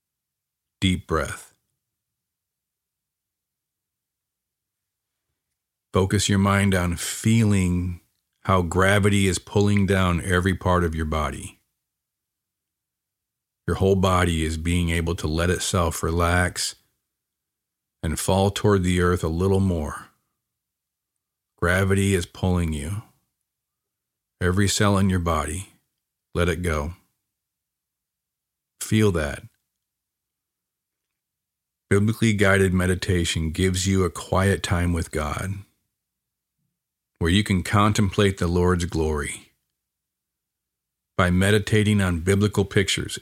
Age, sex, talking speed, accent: 50-69, male, 100 wpm, American